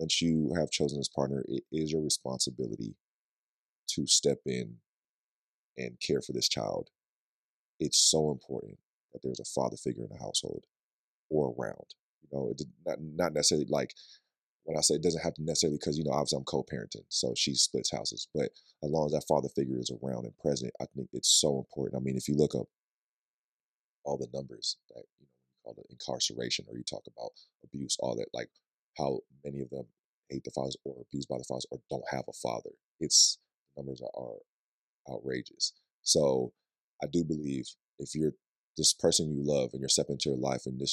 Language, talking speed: English, 200 wpm